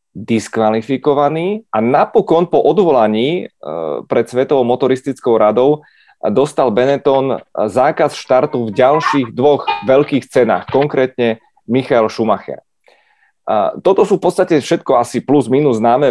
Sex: male